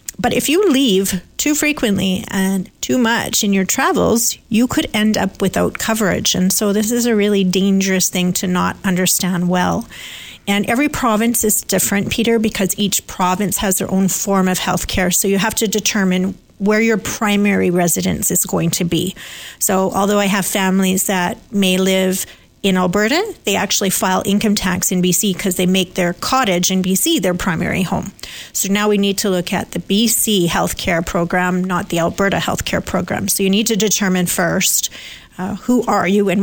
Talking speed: 185 wpm